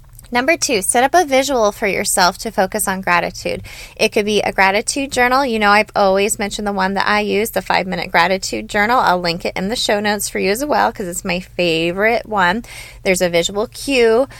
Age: 20-39